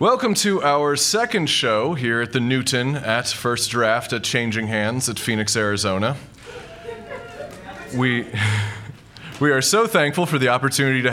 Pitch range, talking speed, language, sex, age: 110-150 Hz, 145 wpm, English, male, 30-49